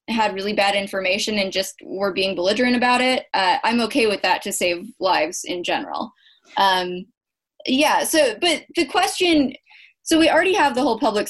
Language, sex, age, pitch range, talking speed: English, female, 20-39, 190-255 Hz, 180 wpm